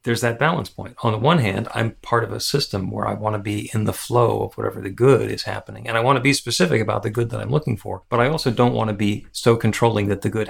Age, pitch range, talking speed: 40-59, 105-120 Hz, 295 wpm